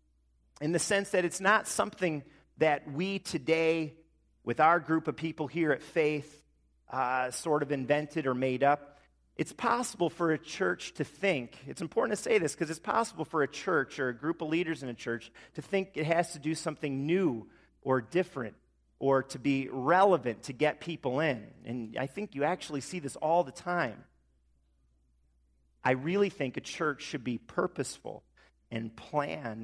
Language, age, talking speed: English, 40-59, 180 wpm